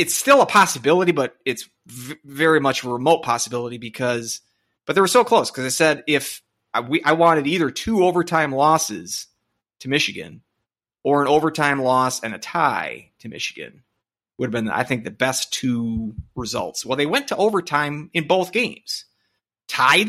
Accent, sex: American, male